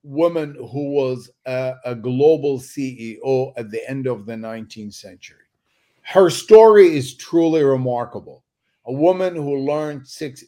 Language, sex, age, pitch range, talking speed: English, male, 50-69, 135-175 Hz, 135 wpm